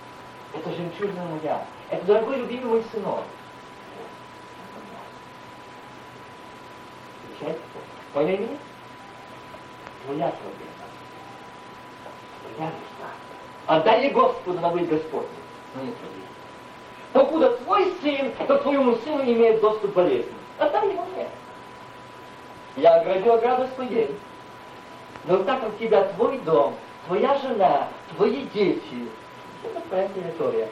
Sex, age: male, 40-59